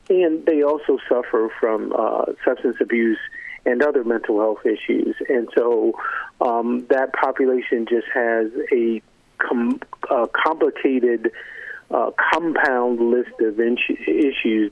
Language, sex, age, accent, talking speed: English, male, 50-69, American, 115 wpm